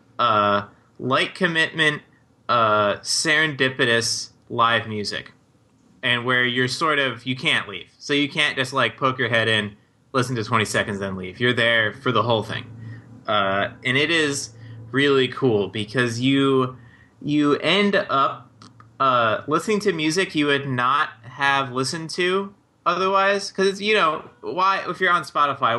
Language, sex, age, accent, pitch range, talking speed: English, male, 20-39, American, 115-145 Hz, 150 wpm